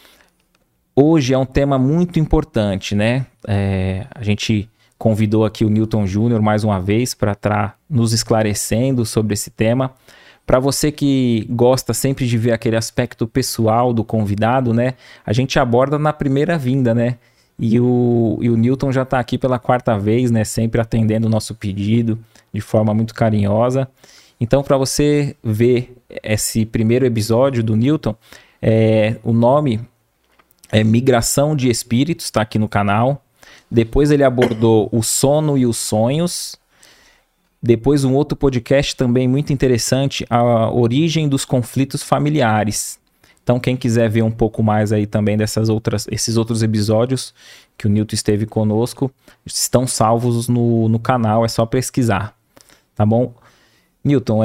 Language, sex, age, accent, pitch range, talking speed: Portuguese, male, 20-39, Brazilian, 110-130 Hz, 145 wpm